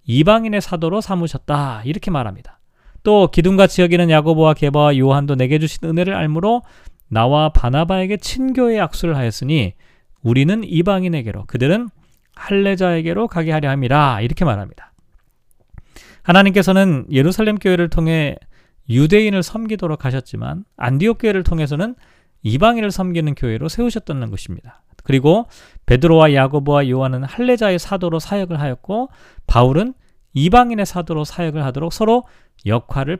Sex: male